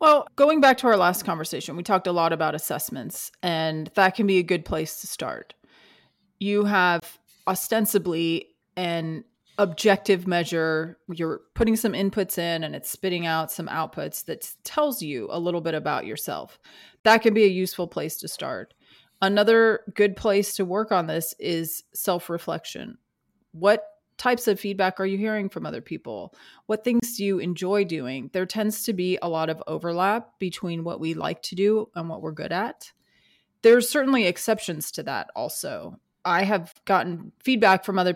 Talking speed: 175 wpm